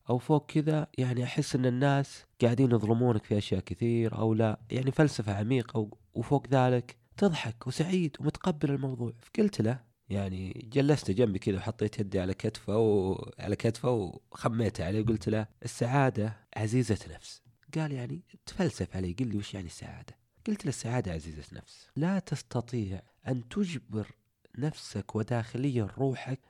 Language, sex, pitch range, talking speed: Arabic, male, 105-135 Hz, 145 wpm